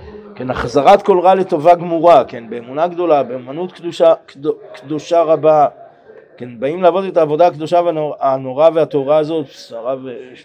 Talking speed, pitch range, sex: 140 wpm, 140-175 Hz, male